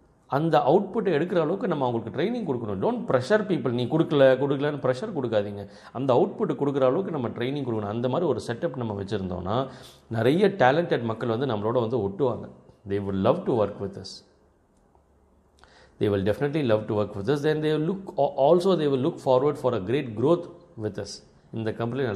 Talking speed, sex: 175 wpm, male